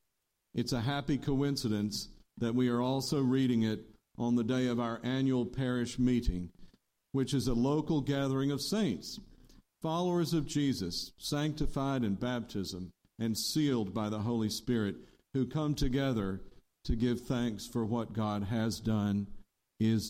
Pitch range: 110-145 Hz